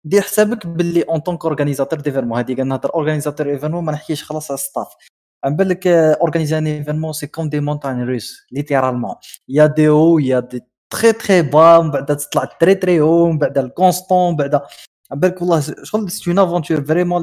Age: 20-39